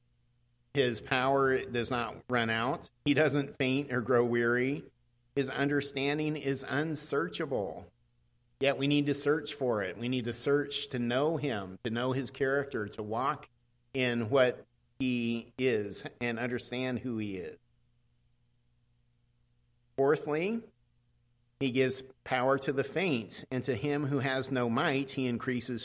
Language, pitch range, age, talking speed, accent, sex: English, 115-140 Hz, 50-69, 140 wpm, American, male